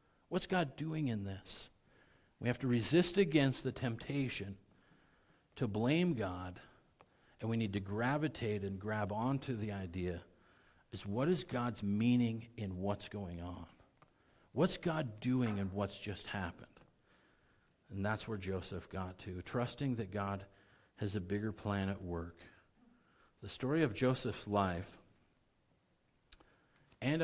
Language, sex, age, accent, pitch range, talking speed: English, male, 50-69, American, 100-130 Hz, 135 wpm